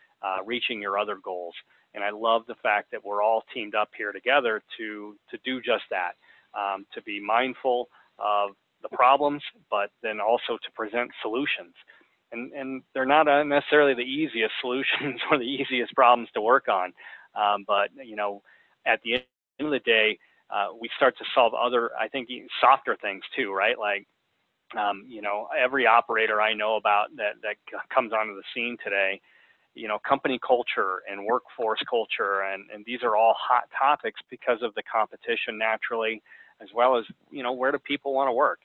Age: 30-49